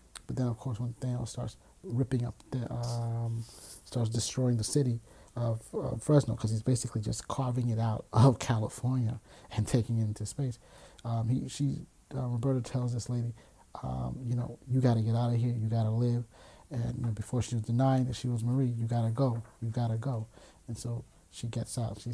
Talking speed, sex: 215 wpm, male